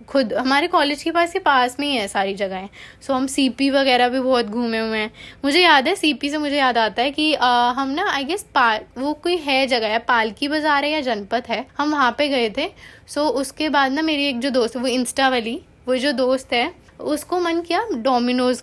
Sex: female